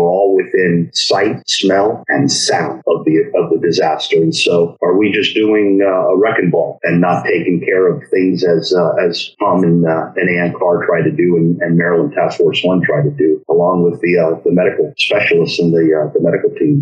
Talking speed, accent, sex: 220 wpm, American, male